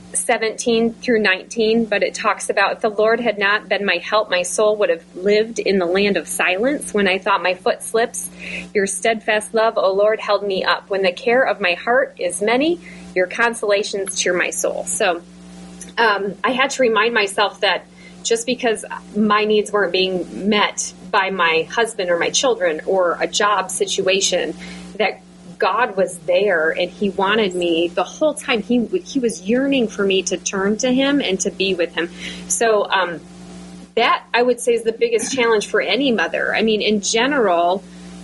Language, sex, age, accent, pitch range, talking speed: English, female, 30-49, American, 180-230 Hz, 190 wpm